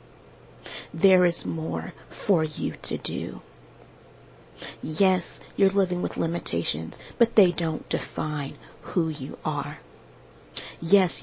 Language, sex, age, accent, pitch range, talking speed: English, female, 40-59, American, 135-175 Hz, 105 wpm